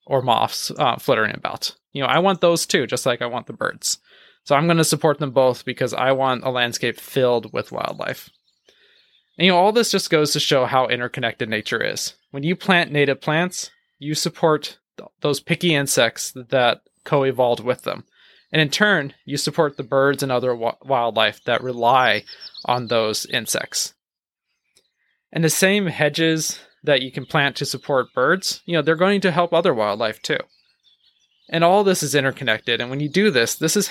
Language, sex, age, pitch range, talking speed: English, male, 20-39, 130-170 Hz, 190 wpm